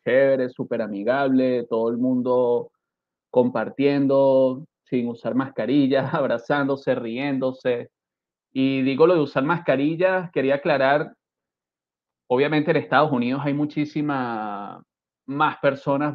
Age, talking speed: 30-49, 100 wpm